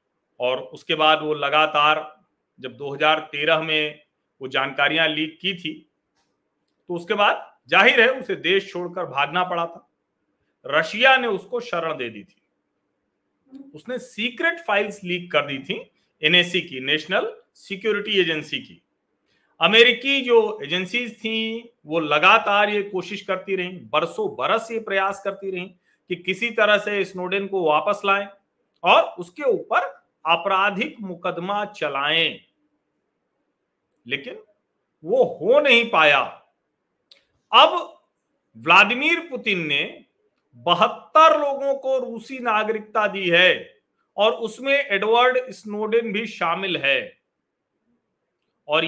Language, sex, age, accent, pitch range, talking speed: Hindi, male, 40-59, native, 170-235 Hz, 100 wpm